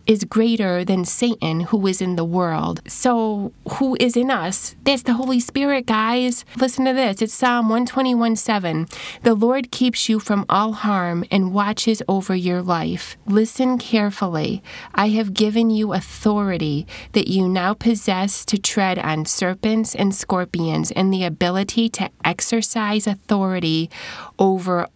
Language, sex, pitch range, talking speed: English, female, 175-225 Hz, 145 wpm